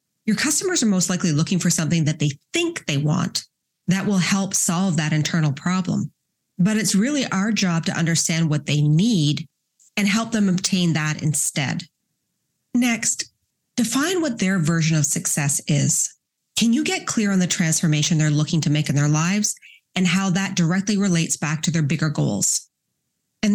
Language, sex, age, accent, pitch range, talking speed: English, female, 30-49, American, 155-195 Hz, 175 wpm